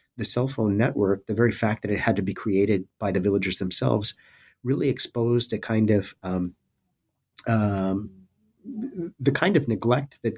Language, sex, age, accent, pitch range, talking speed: English, male, 40-59, American, 100-120 Hz, 155 wpm